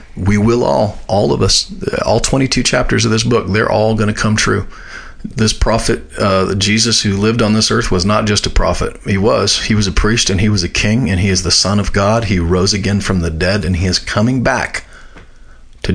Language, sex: English, male